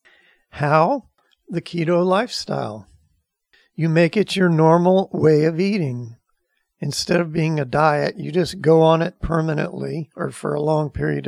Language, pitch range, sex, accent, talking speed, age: English, 145-170 Hz, male, American, 150 wpm, 50-69